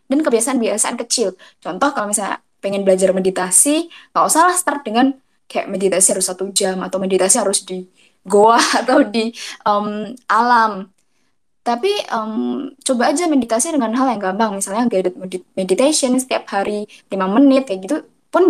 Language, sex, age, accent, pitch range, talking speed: Indonesian, female, 20-39, native, 205-285 Hz, 155 wpm